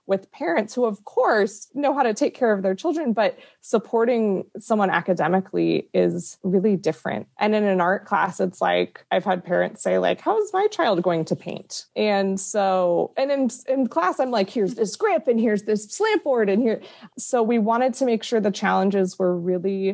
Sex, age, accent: female, 20-39, American